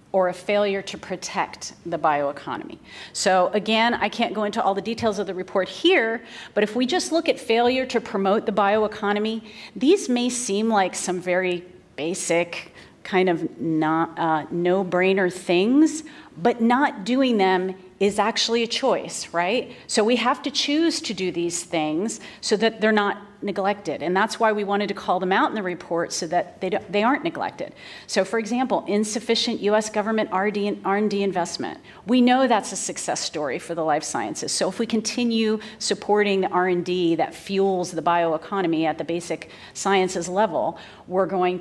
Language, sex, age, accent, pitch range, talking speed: English, female, 40-59, American, 180-225 Hz, 175 wpm